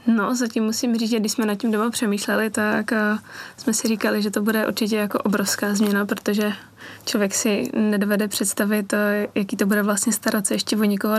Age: 20-39